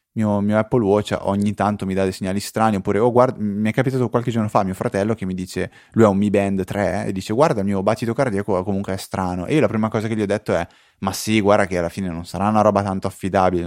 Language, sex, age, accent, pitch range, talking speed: Italian, male, 20-39, native, 95-115 Hz, 280 wpm